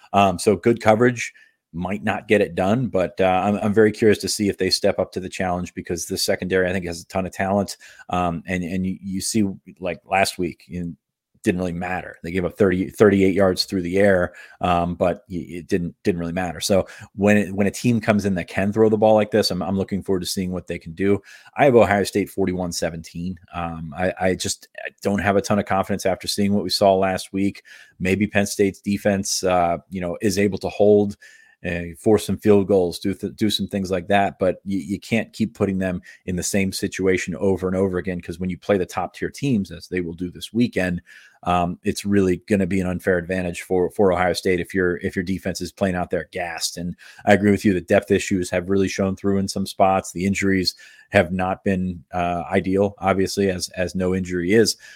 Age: 30-49